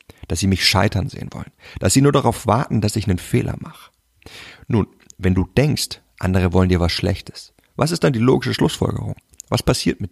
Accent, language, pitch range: German, German, 95-120 Hz